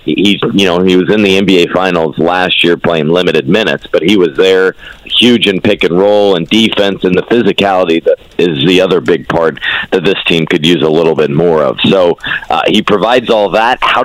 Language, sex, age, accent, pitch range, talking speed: English, male, 40-59, American, 95-115 Hz, 210 wpm